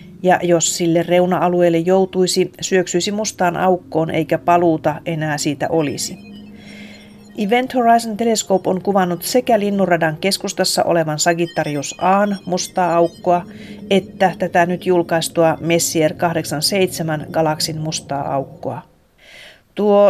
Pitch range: 165-195 Hz